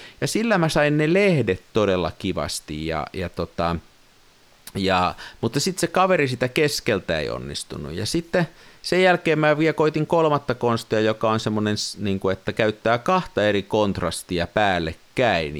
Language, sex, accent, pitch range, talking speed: Finnish, male, native, 90-130 Hz, 145 wpm